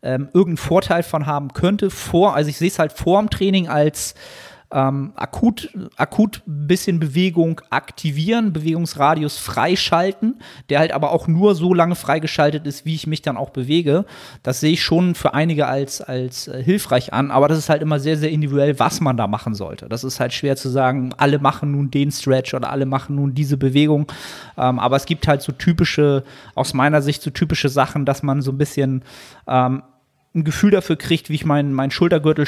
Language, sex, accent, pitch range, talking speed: German, male, German, 135-160 Hz, 200 wpm